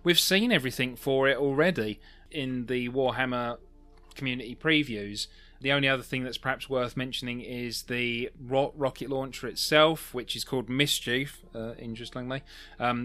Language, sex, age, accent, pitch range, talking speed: English, male, 30-49, British, 120-140 Hz, 145 wpm